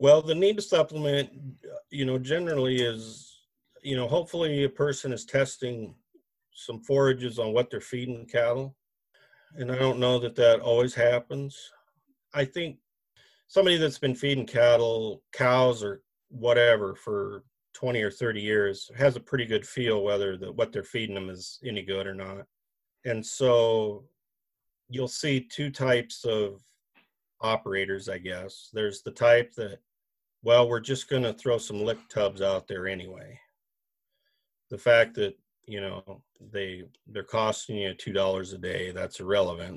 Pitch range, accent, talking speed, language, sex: 105-135 Hz, American, 155 wpm, English, male